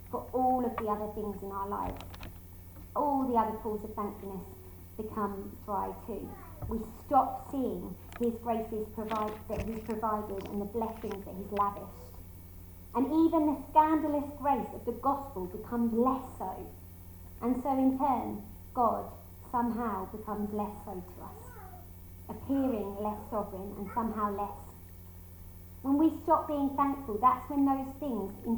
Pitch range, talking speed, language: 200-255 Hz, 150 wpm, English